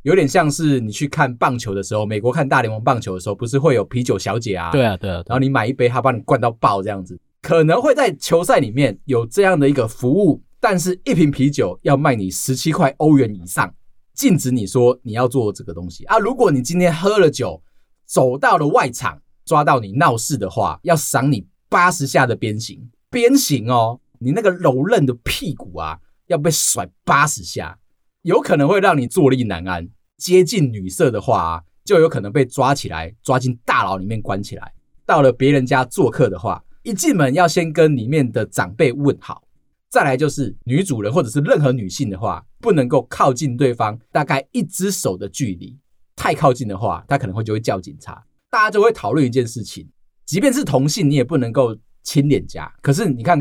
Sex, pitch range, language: male, 115-145 Hz, Chinese